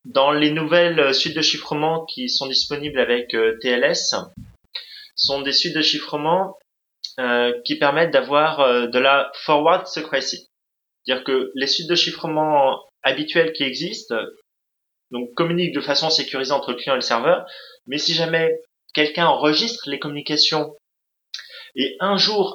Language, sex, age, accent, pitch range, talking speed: French, male, 30-49, French, 135-170 Hz, 150 wpm